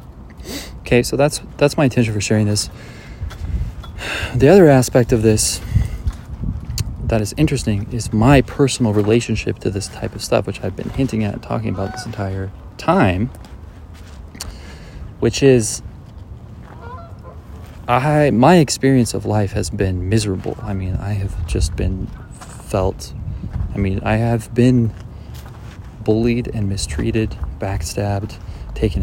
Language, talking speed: English, 130 wpm